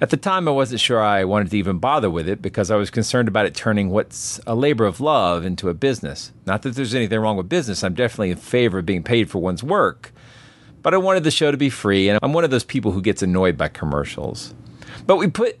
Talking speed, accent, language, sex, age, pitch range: 260 wpm, American, English, male, 40-59, 90-125 Hz